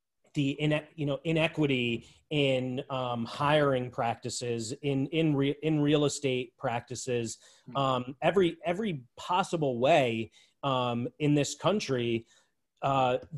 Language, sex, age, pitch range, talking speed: English, male, 30-49, 125-150 Hz, 115 wpm